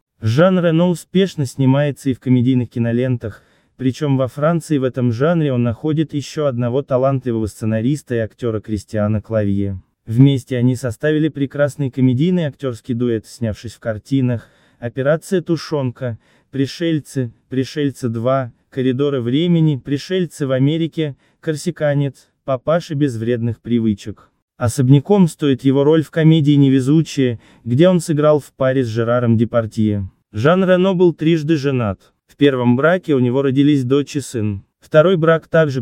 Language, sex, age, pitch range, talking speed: Russian, male, 20-39, 120-155 Hz, 135 wpm